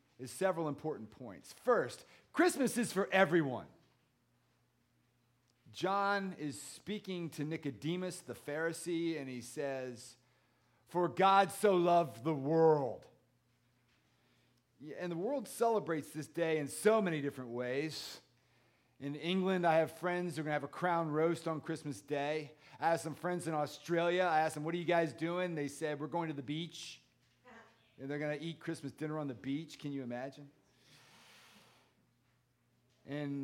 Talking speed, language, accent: 155 wpm, English, American